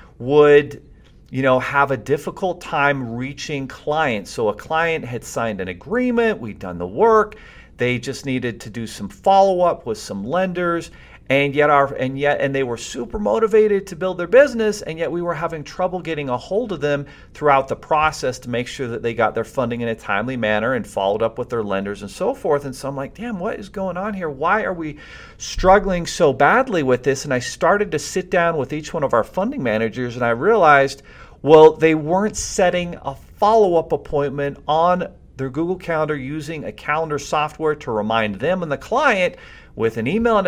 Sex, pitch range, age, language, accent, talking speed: male, 130-180 Hz, 40-59, English, American, 205 wpm